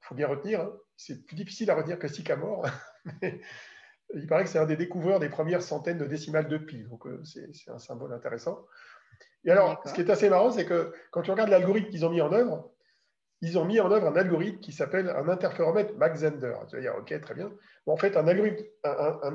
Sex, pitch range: male, 140-185 Hz